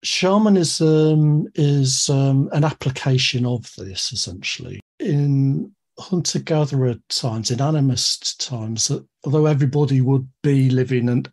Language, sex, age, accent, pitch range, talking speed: English, male, 60-79, British, 125-150 Hz, 115 wpm